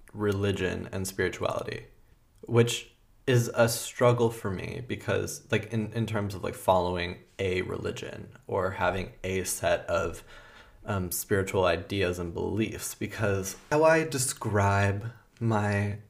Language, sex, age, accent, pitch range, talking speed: English, male, 20-39, American, 95-115 Hz, 125 wpm